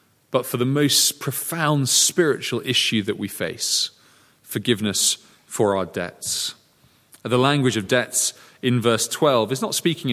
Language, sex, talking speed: English, male, 140 wpm